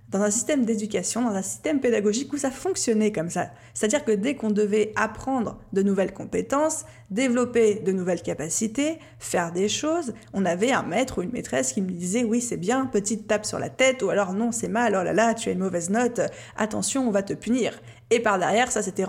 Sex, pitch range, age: female, 195-240 Hz, 20-39